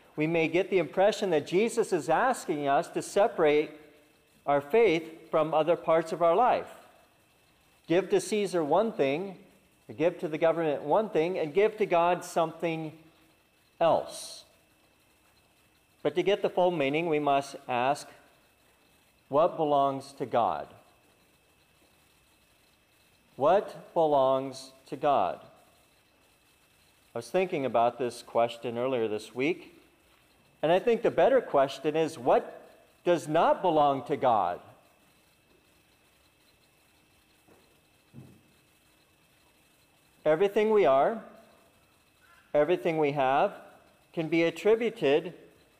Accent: American